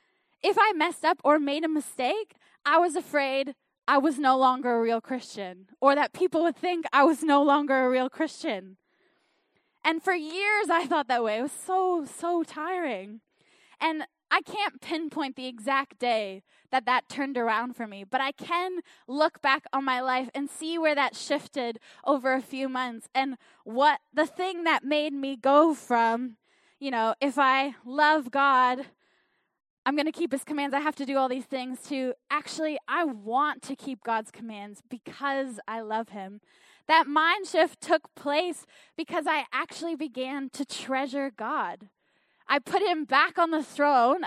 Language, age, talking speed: English, 10-29, 180 wpm